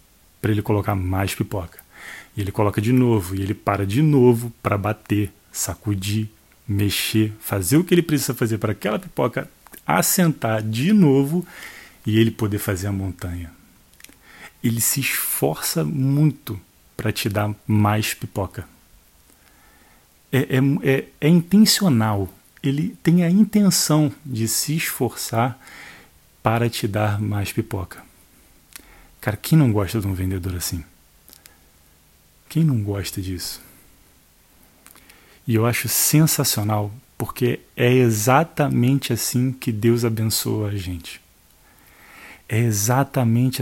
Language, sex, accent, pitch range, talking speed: Portuguese, male, Brazilian, 100-130 Hz, 120 wpm